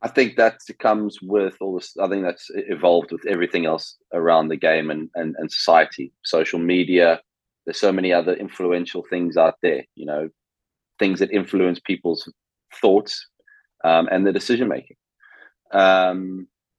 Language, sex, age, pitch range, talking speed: English, male, 20-39, 85-105 Hz, 155 wpm